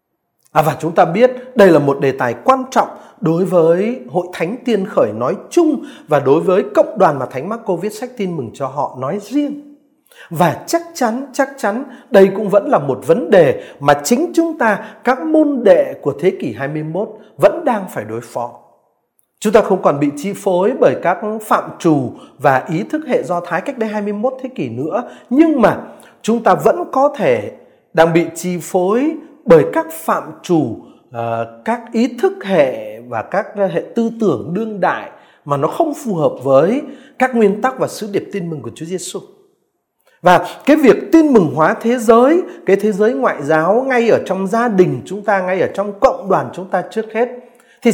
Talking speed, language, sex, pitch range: 200 wpm, Vietnamese, male, 175-265 Hz